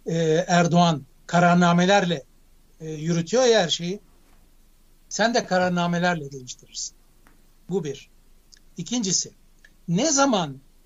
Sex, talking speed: male, 90 wpm